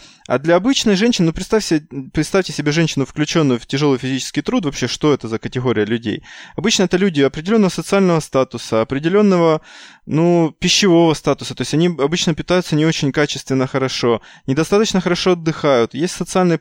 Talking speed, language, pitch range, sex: 160 wpm, Russian, 135-175 Hz, male